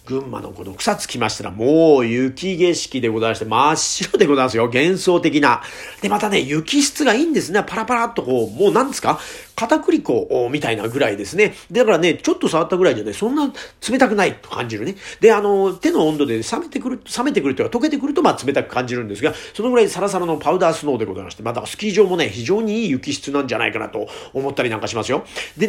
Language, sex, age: Japanese, male, 40-59